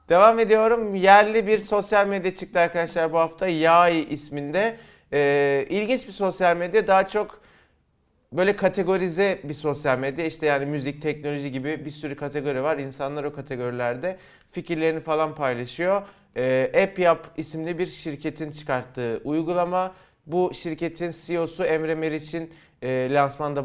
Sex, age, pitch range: male, 30-49, 150-185 Hz